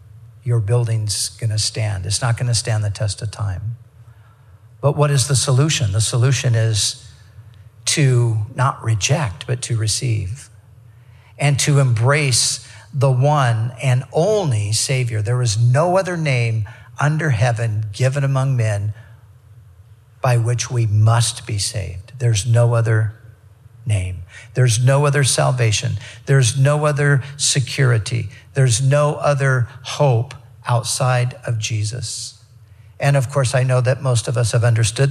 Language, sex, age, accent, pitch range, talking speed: English, male, 50-69, American, 115-135 Hz, 135 wpm